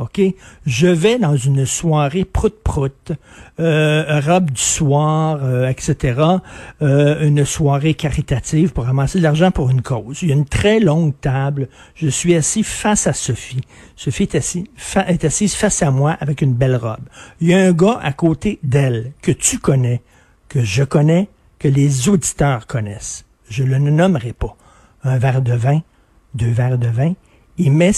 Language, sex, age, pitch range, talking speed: French, male, 60-79, 130-175 Hz, 180 wpm